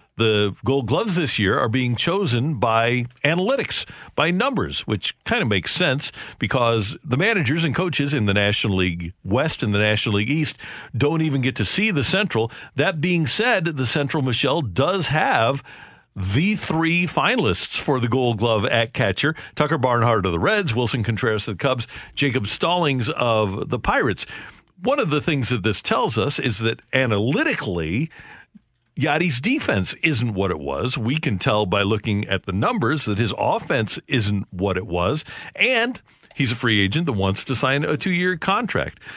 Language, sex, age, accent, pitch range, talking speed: English, male, 50-69, American, 110-150 Hz, 175 wpm